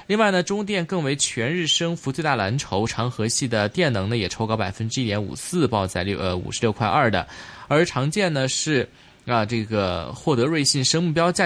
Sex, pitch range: male, 110-155 Hz